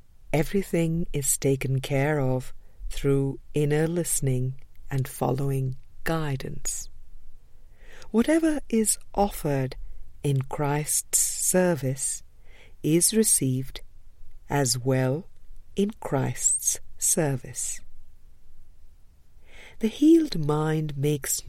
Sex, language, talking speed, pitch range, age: female, English, 80 wpm, 100-160 Hz, 50-69